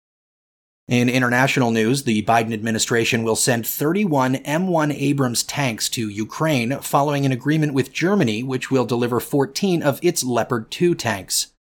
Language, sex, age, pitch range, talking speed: English, male, 30-49, 115-145 Hz, 145 wpm